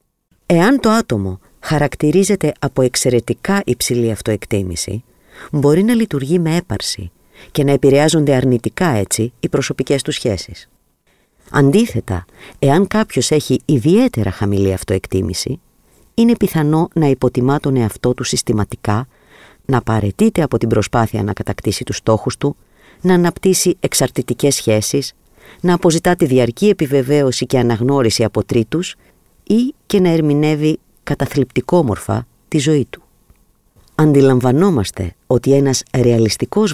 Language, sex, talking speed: Greek, female, 120 wpm